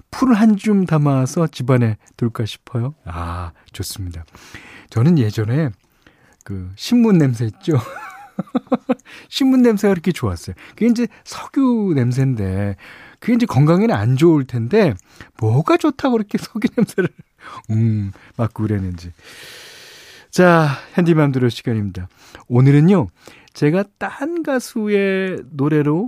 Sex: male